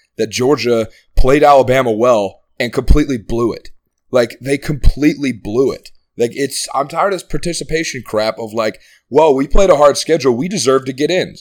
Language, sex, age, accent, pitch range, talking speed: English, male, 20-39, American, 120-155 Hz, 185 wpm